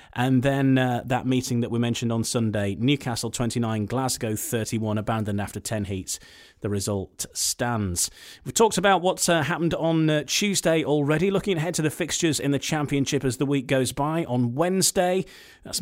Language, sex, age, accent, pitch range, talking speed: English, male, 30-49, British, 110-150 Hz, 180 wpm